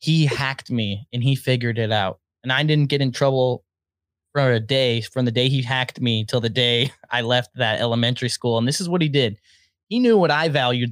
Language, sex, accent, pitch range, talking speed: English, male, American, 115-140 Hz, 230 wpm